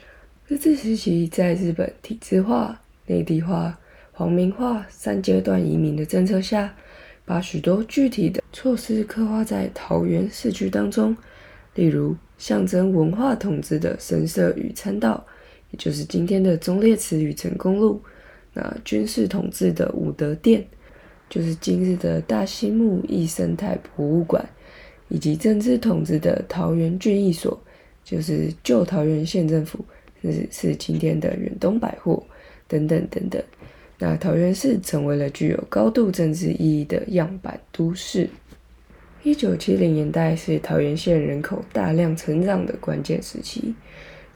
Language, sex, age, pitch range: Chinese, female, 20-39, 150-200 Hz